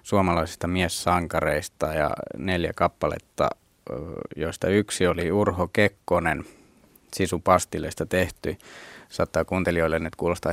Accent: native